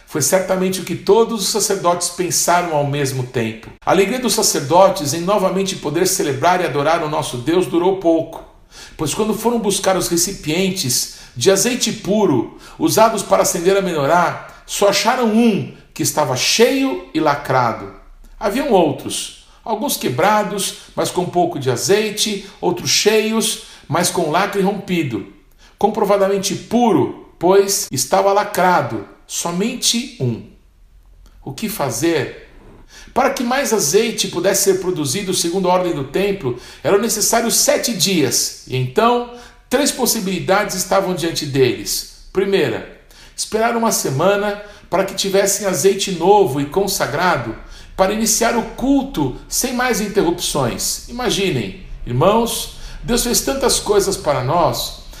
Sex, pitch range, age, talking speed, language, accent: male, 165-215 Hz, 60-79, 135 wpm, Portuguese, Brazilian